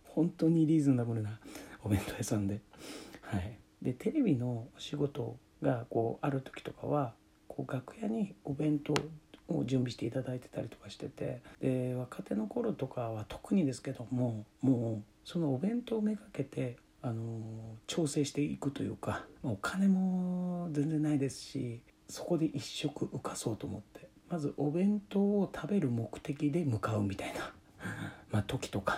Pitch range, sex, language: 115-155 Hz, male, Japanese